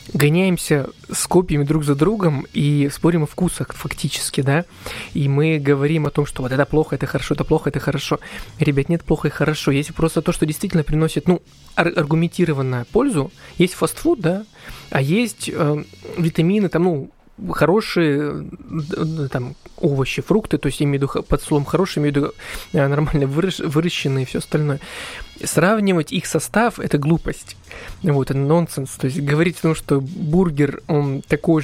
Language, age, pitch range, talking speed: Russian, 20-39, 145-175 Hz, 170 wpm